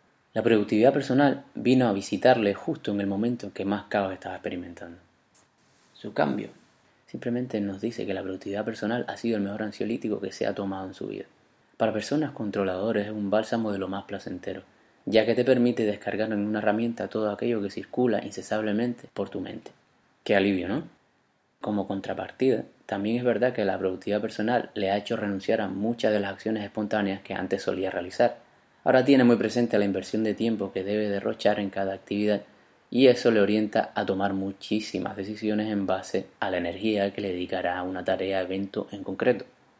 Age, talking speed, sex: 20-39, 190 wpm, male